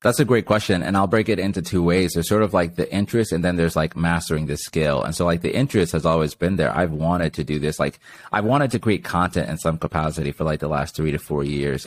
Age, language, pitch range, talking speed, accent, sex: 30-49, English, 80-95 Hz, 285 wpm, American, male